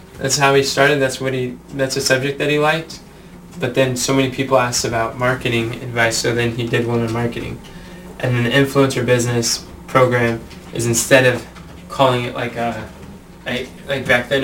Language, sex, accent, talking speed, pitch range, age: English, male, American, 190 wpm, 120-145 Hz, 10-29